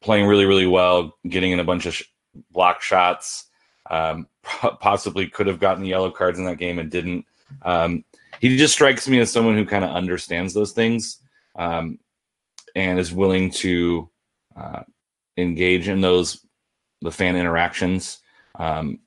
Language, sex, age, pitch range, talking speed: English, male, 30-49, 85-100 Hz, 155 wpm